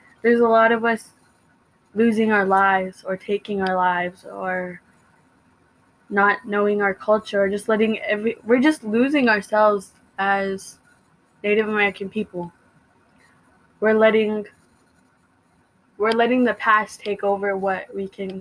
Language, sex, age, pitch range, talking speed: English, female, 20-39, 195-225 Hz, 130 wpm